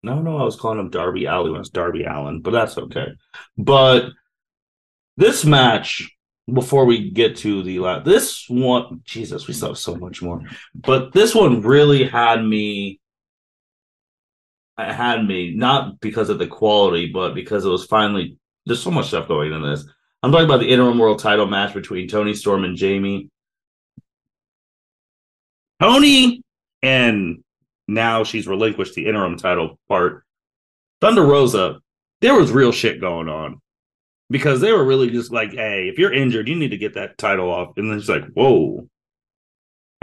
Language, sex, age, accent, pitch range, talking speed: English, male, 30-49, American, 100-130 Hz, 165 wpm